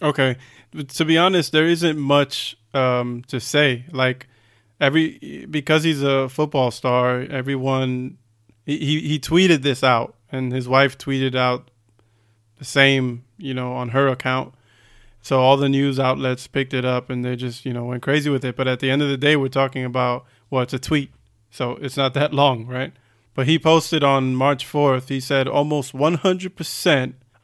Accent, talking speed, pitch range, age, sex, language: American, 180 wpm, 125-145 Hz, 20-39, male, English